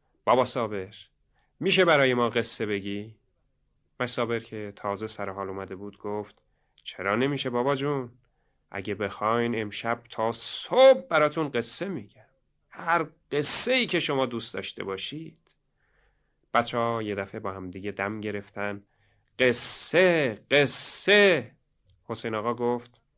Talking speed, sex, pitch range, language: 120 wpm, male, 100-135 Hz, Persian